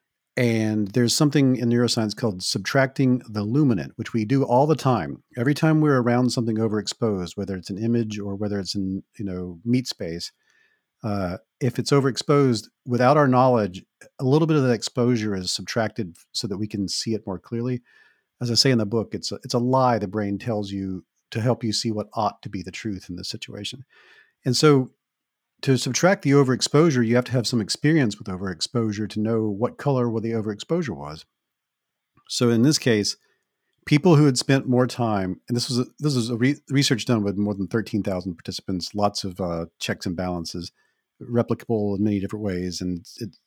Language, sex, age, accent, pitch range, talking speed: English, male, 40-59, American, 100-130 Hz, 200 wpm